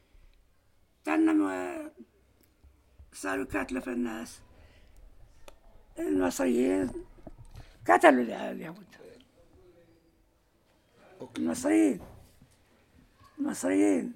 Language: English